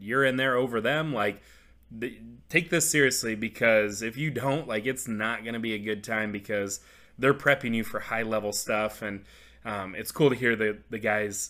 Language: English